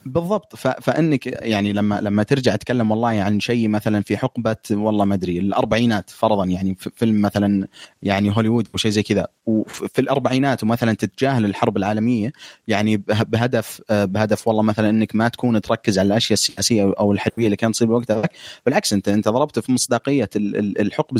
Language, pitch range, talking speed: Arabic, 105-125 Hz, 165 wpm